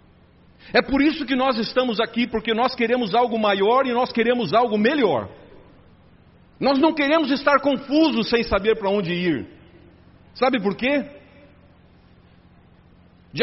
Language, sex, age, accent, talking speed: Portuguese, male, 60-79, Brazilian, 140 wpm